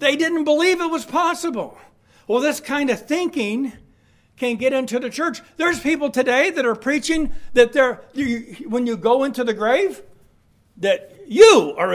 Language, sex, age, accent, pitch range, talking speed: English, male, 60-79, American, 230-310 Hz, 160 wpm